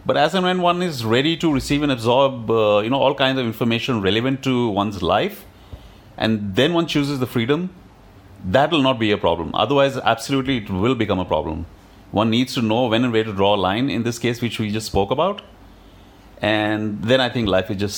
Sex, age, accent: male, 30-49, Indian